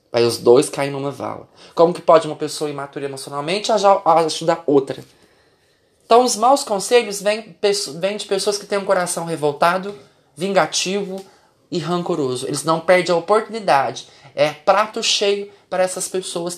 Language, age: Portuguese, 20-39